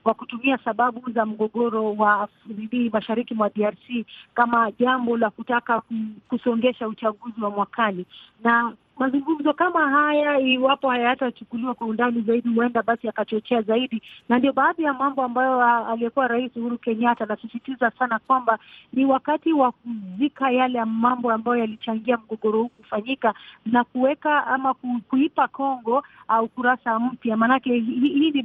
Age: 30-49